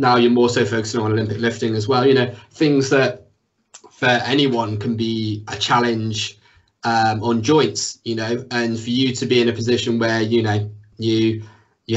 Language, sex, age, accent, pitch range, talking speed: English, male, 20-39, British, 110-125 Hz, 190 wpm